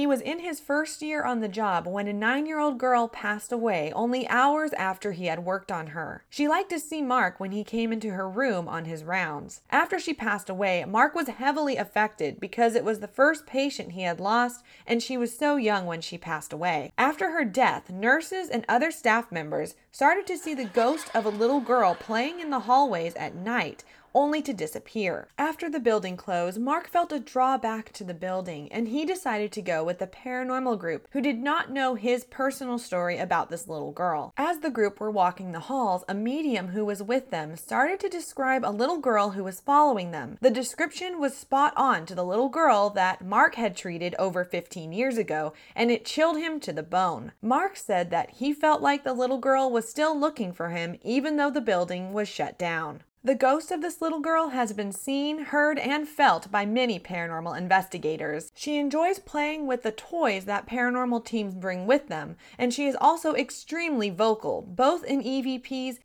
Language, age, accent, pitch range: English, 20-39, American, 195-285 Hz